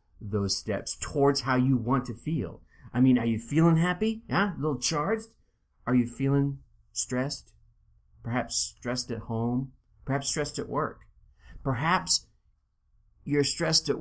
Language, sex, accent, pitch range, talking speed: English, male, American, 110-145 Hz, 145 wpm